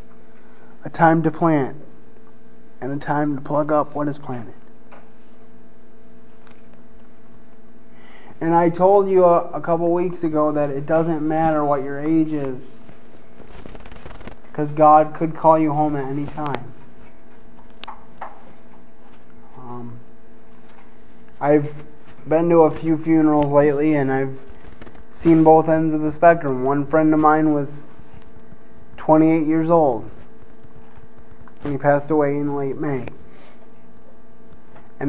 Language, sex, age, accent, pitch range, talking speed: English, male, 20-39, American, 140-160 Hz, 120 wpm